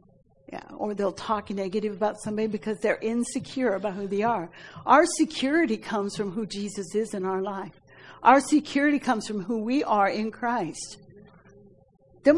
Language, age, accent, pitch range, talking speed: English, 60-79, American, 195-245 Hz, 160 wpm